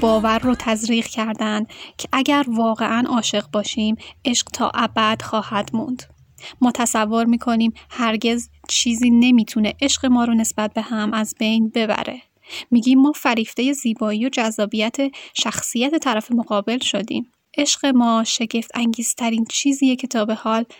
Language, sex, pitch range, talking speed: Persian, female, 220-255 Hz, 140 wpm